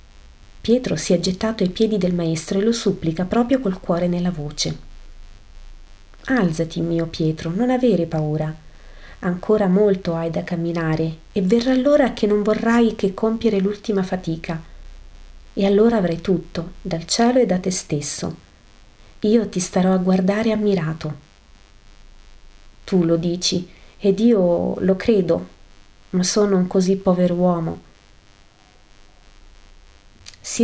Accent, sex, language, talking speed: native, female, Italian, 130 wpm